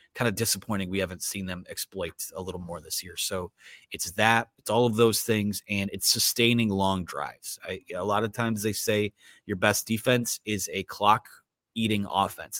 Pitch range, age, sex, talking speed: 100-125 Hz, 30-49, male, 195 wpm